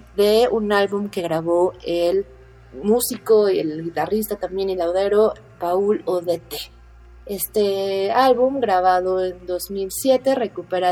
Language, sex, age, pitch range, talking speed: Spanish, female, 30-49, 170-210 Hz, 115 wpm